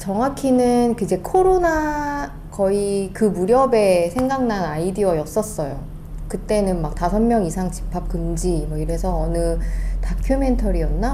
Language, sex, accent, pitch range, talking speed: English, female, Korean, 165-235 Hz, 100 wpm